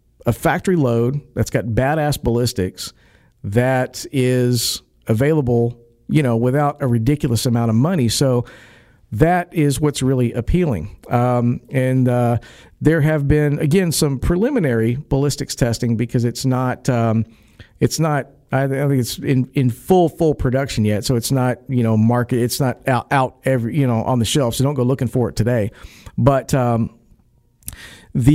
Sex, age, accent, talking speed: male, 50-69, American, 160 wpm